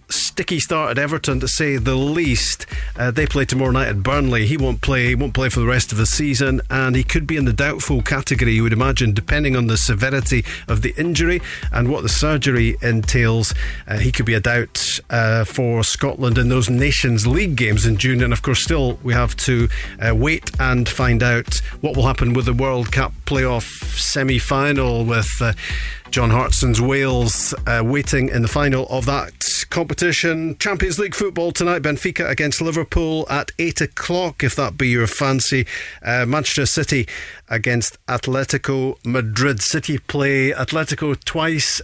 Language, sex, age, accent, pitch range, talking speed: English, male, 40-59, British, 120-145 Hz, 180 wpm